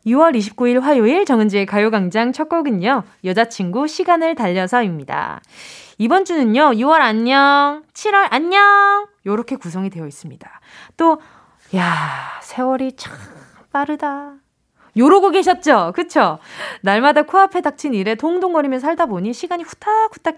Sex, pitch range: female, 215-330 Hz